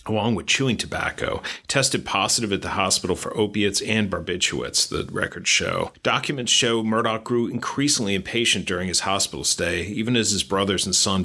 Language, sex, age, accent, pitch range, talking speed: English, male, 40-59, American, 95-110 Hz, 170 wpm